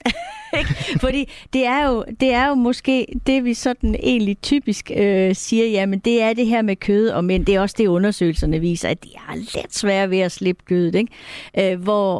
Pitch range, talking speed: 185-230 Hz, 205 wpm